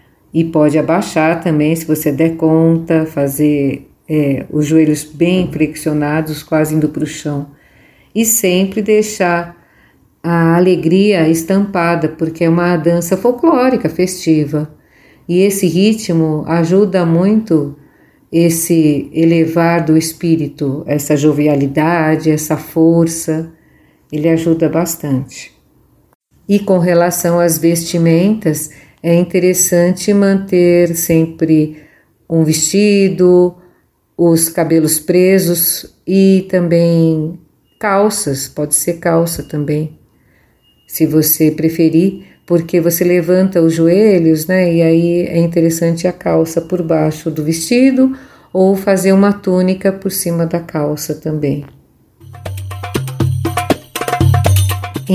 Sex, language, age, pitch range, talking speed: female, Portuguese, 50-69, 155-180 Hz, 105 wpm